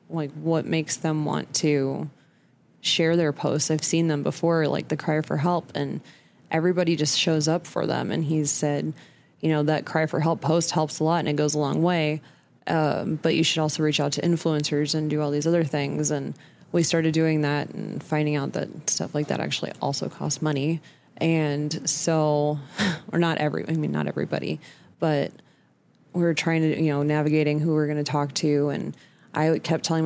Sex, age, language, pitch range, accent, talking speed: female, 20-39, English, 150-165 Hz, American, 205 wpm